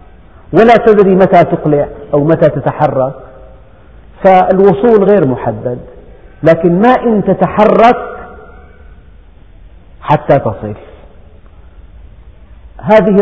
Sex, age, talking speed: male, 50-69, 75 wpm